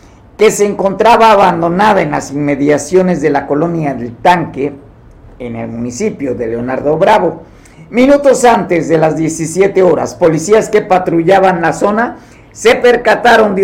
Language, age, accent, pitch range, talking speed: Spanish, 50-69, Mexican, 145-195 Hz, 140 wpm